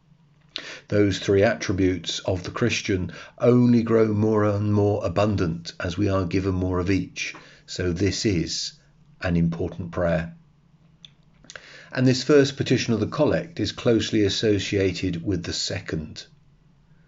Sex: male